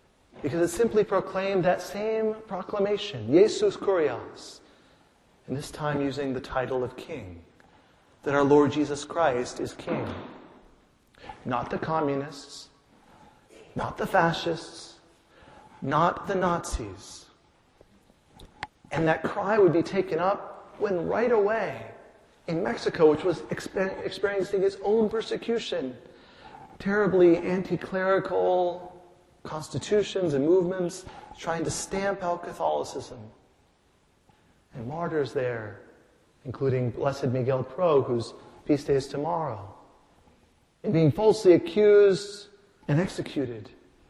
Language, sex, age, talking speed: English, male, 40-59, 110 wpm